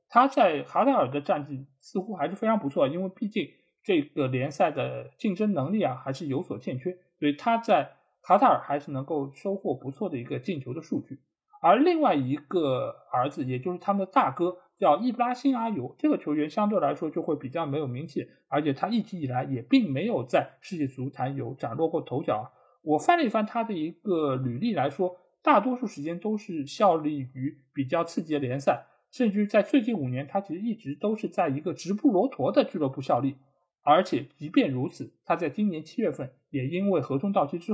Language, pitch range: Chinese, 140-205 Hz